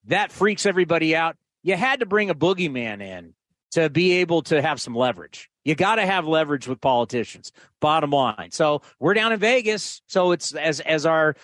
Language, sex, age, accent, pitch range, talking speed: English, male, 40-59, American, 140-180 Hz, 190 wpm